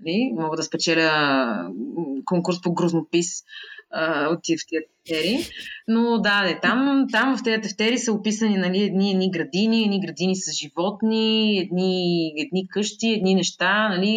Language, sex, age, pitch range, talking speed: Bulgarian, female, 20-39, 165-225 Hz, 145 wpm